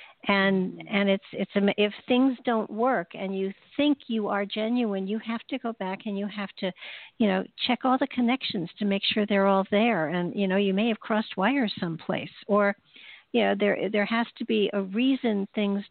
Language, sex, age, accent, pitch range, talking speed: English, female, 60-79, American, 195-225 Hz, 210 wpm